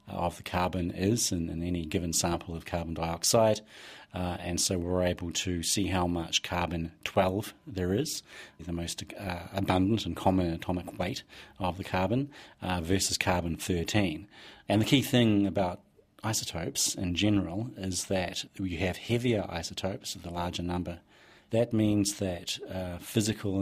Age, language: 30-49, English